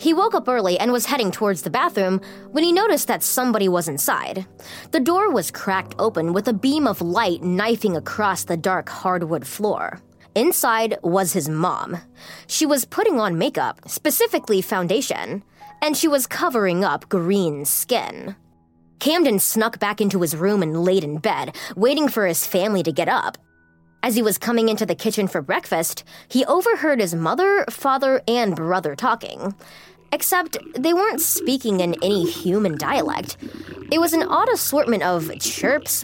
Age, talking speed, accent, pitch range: 20-39, 165 wpm, American, 180-260 Hz